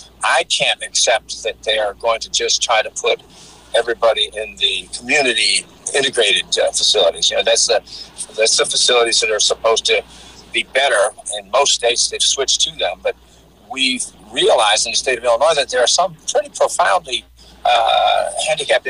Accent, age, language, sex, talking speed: American, 50-69, English, male, 170 wpm